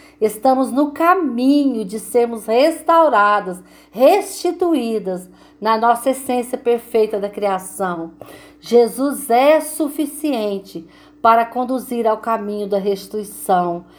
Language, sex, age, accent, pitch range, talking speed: Portuguese, female, 40-59, Brazilian, 205-290 Hz, 95 wpm